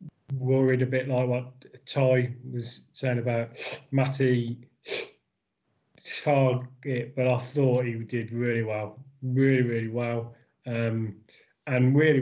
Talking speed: 120 wpm